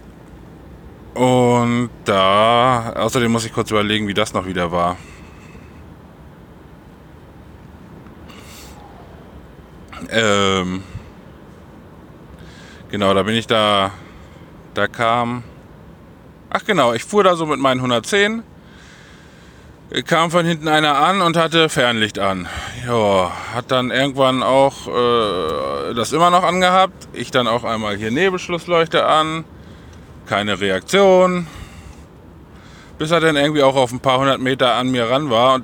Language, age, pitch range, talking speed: German, 20-39, 105-155 Hz, 120 wpm